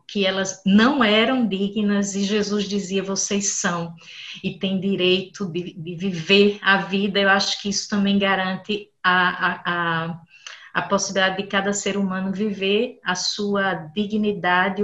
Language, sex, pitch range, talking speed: Portuguese, female, 185-215 Hz, 140 wpm